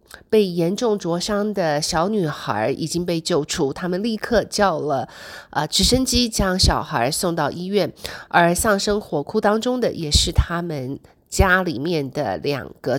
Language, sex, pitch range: Chinese, female, 170-240 Hz